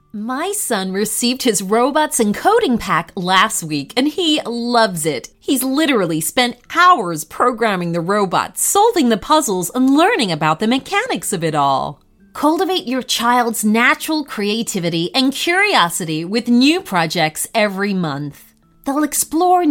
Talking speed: 140 wpm